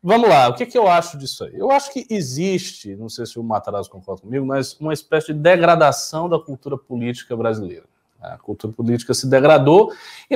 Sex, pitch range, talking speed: male, 115-185 Hz, 205 wpm